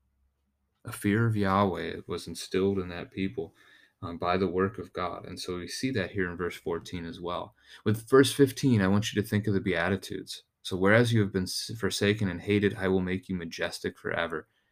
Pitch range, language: 90-105 Hz, English